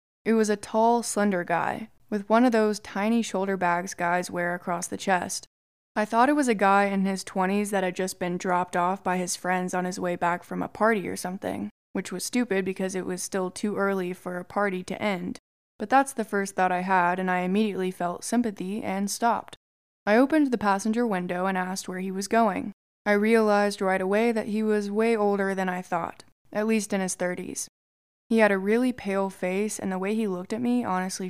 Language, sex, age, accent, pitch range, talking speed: English, female, 20-39, American, 185-215 Hz, 220 wpm